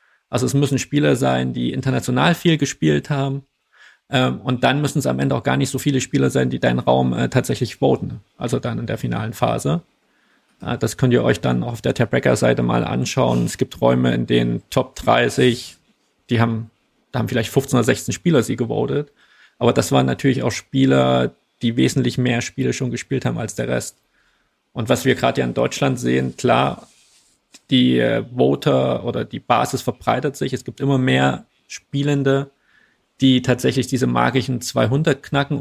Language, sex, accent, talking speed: German, male, German, 180 wpm